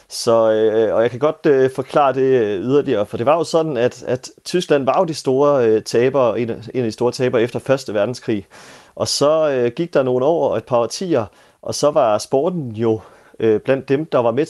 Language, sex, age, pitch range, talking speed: Danish, male, 30-49, 115-155 Hz, 185 wpm